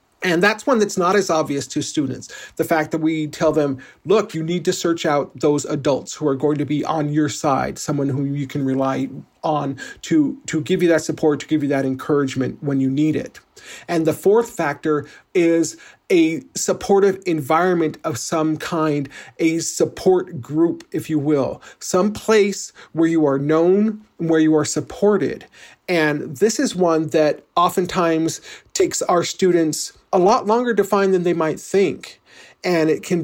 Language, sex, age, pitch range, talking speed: English, male, 40-59, 150-180 Hz, 180 wpm